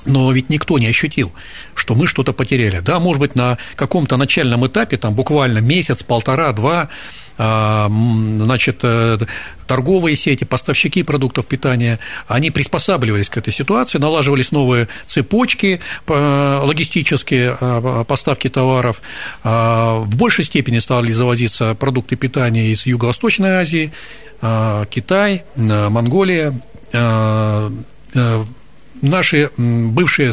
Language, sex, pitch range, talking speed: Russian, male, 120-155 Hz, 105 wpm